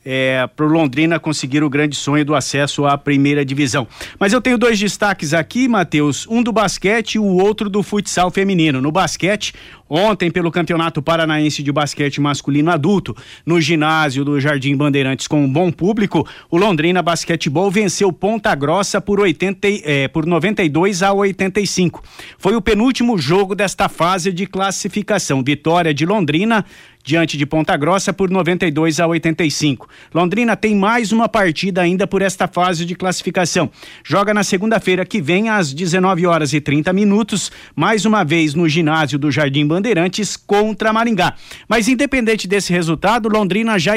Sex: male